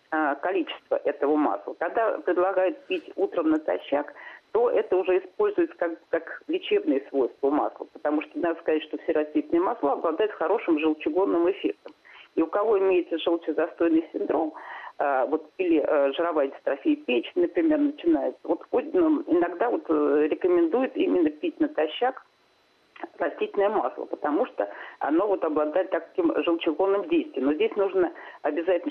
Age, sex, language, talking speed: 40-59, female, Russian, 130 wpm